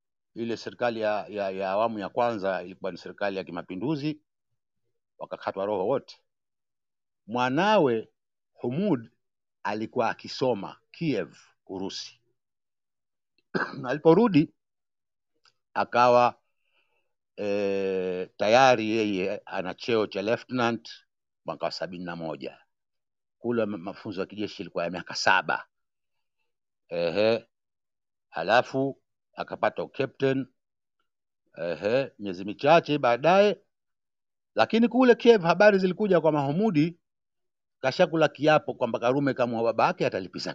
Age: 60-79